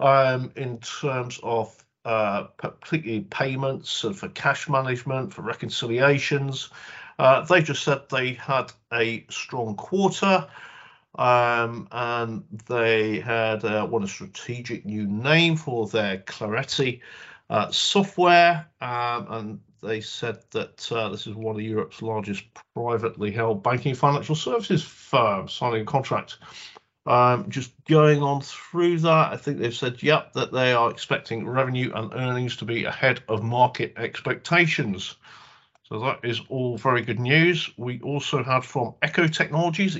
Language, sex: English, male